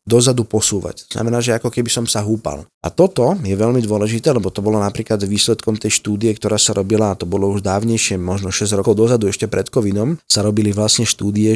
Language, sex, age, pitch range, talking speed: Slovak, male, 20-39, 105-120 Hz, 210 wpm